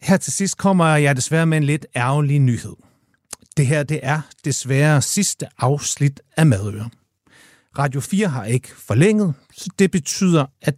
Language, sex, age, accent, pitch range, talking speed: Danish, male, 60-79, native, 120-165 Hz, 165 wpm